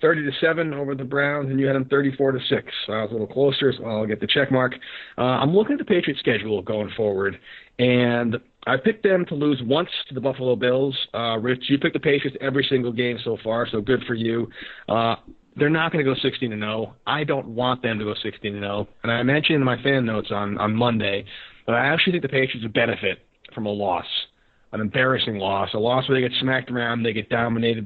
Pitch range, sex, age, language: 110-135 Hz, male, 30-49, English